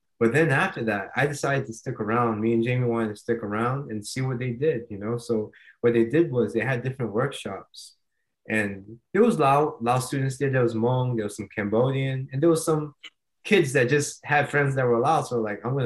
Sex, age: male, 20-39